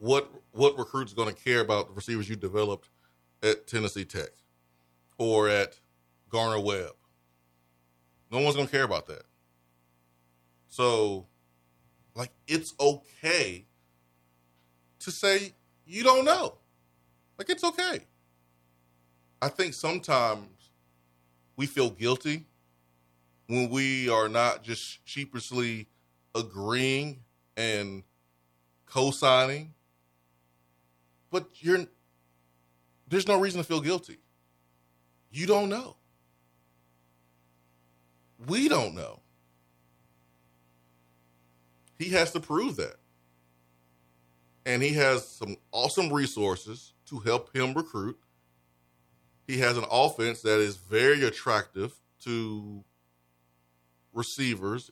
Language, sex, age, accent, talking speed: English, male, 30-49, American, 100 wpm